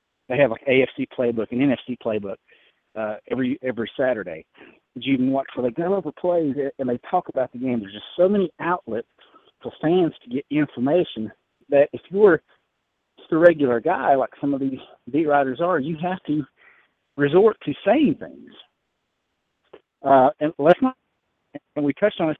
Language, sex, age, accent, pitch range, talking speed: English, male, 50-69, American, 130-180 Hz, 190 wpm